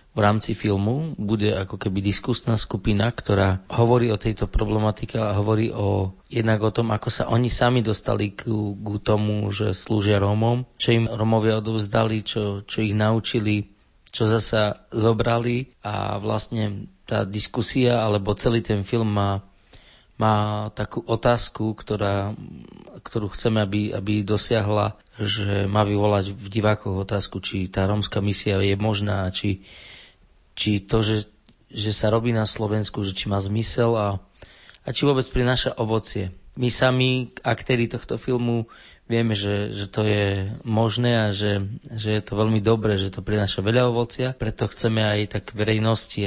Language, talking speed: Slovak, 150 wpm